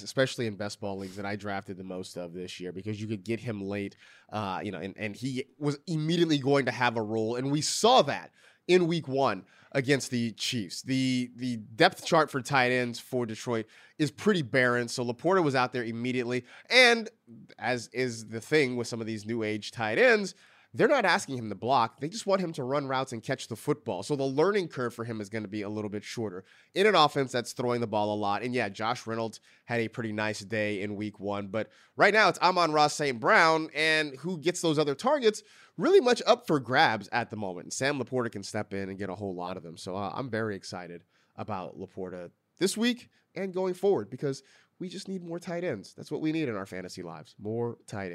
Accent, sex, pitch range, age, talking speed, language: American, male, 105-150 Hz, 30-49, 235 wpm, English